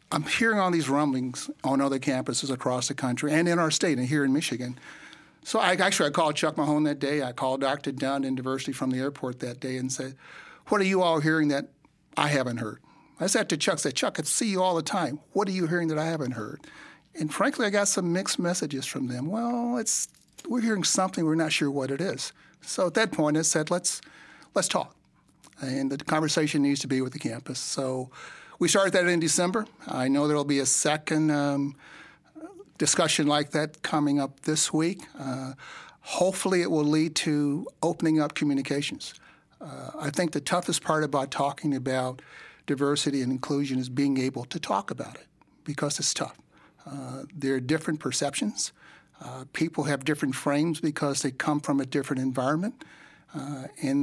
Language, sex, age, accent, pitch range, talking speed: English, male, 60-79, American, 135-165 Hz, 200 wpm